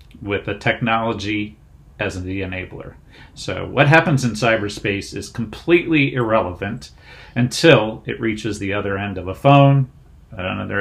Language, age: English, 40-59